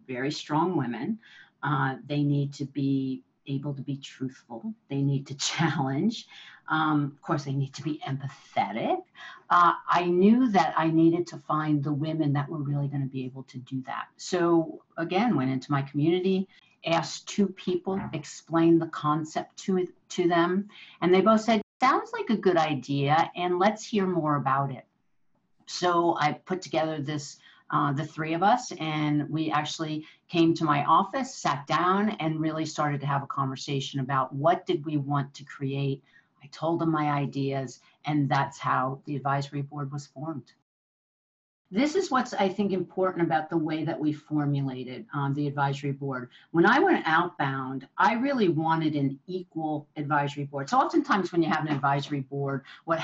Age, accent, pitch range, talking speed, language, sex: 50-69, American, 140-175 Hz, 175 wpm, English, female